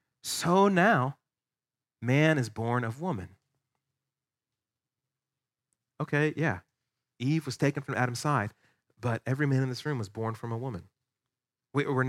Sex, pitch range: male, 120-155 Hz